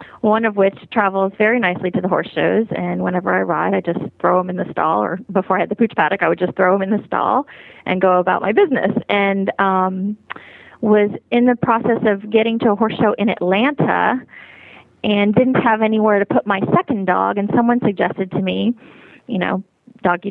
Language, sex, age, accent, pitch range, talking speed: English, female, 30-49, American, 185-220 Hz, 215 wpm